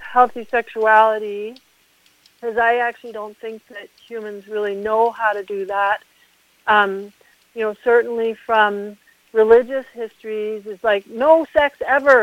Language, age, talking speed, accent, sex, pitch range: English, 50-69, 130 wpm, American, female, 205-255 Hz